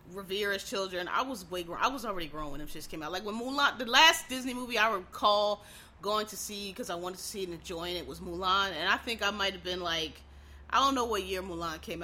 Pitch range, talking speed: 160-215 Hz, 265 wpm